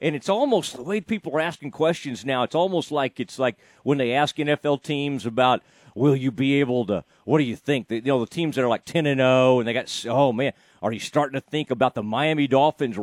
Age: 40-59